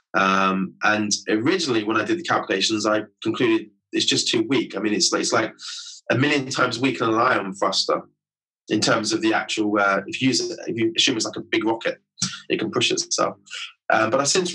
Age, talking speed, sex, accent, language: 20-39, 220 wpm, male, British, English